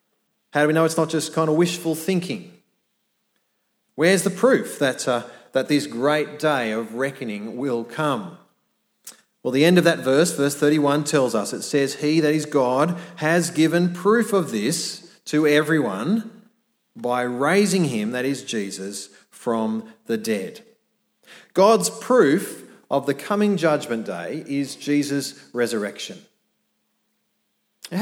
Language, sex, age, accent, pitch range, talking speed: English, male, 40-59, Australian, 125-190 Hz, 145 wpm